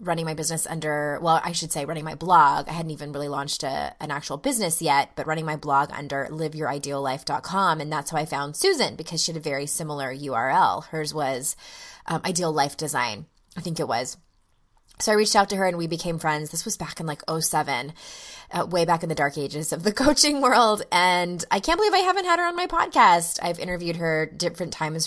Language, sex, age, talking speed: English, female, 20-39, 220 wpm